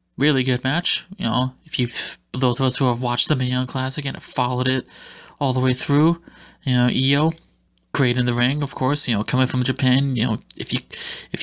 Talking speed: 220 wpm